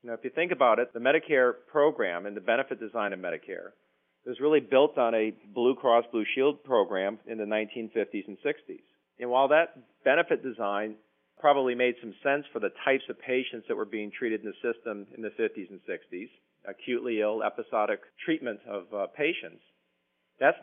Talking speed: 185 wpm